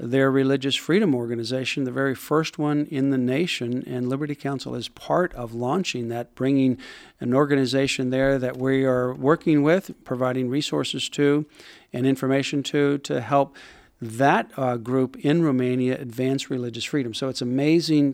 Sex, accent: male, American